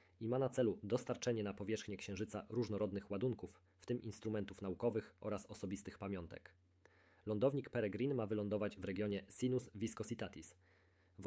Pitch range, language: 100-110 Hz, Polish